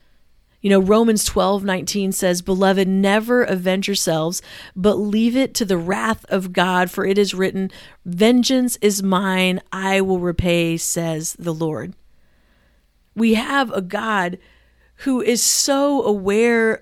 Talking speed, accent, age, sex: 140 wpm, American, 40-59, female